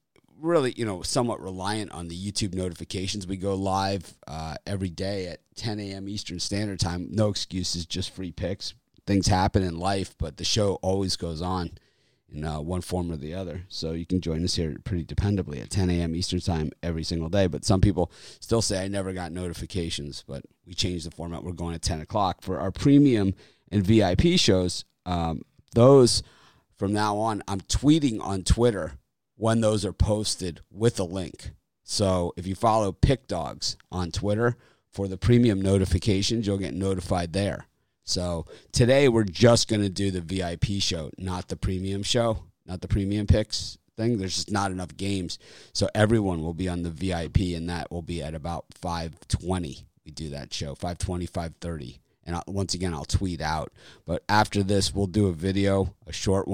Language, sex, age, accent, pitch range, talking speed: English, male, 30-49, American, 85-100 Hz, 185 wpm